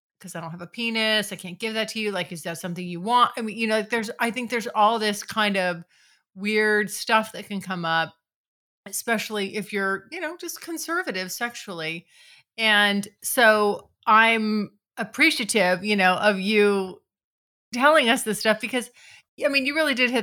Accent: American